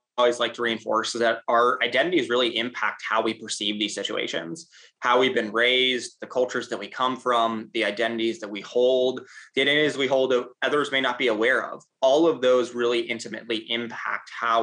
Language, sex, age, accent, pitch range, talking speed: English, male, 20-39, American, 110-125 Hz, 195 wpm